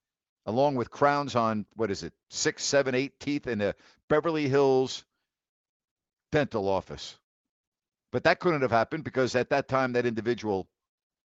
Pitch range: 115-155 Hz